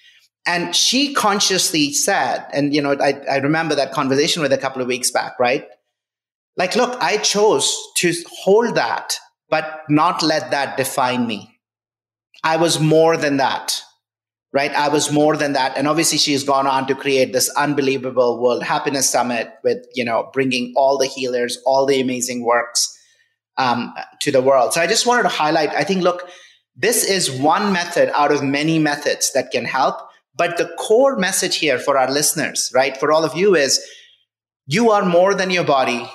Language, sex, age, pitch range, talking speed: English, male, 30-49, 135-165 Hz, 185 wpm